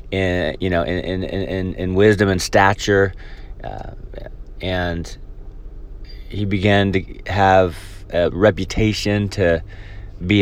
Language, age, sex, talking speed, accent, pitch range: English, 30-49, male, 100 wpm, American, 90-110 Hz